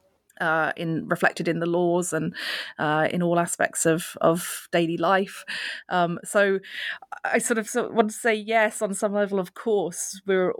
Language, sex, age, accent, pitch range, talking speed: English, female, 30-49, British, 165-200 Hz, 180 wpm